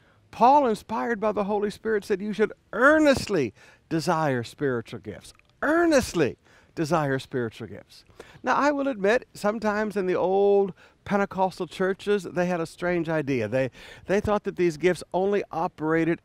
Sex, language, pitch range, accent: male, English, 140-200 Hz, American